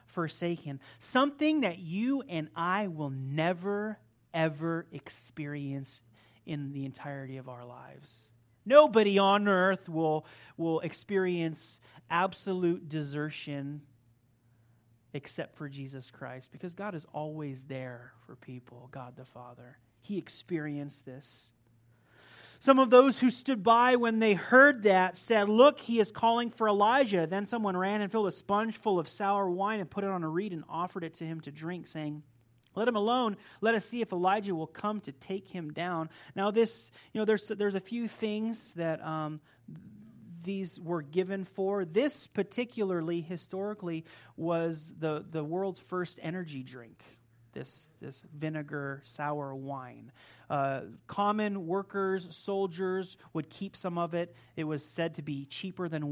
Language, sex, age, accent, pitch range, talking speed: English, male, 30-49, American, 140-200 Hz, 155 wpm